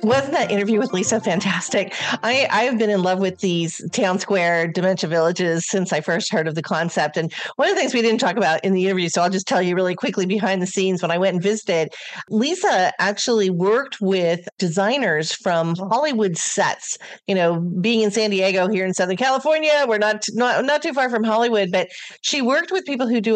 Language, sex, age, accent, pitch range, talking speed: English, female, 40-59, American, 185-230 Hz, 215 wpm